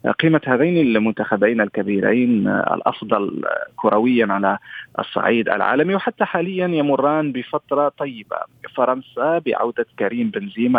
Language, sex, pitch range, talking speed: Arabic, male, 115-160 Hz, 105 wpm